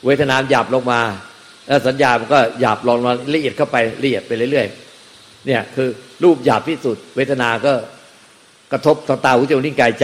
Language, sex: Thai, male